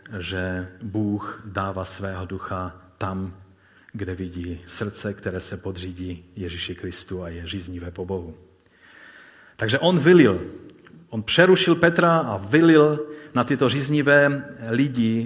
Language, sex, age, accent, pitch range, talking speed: Czech, male, 40-59, native, 110-155 Hz, 120 wpm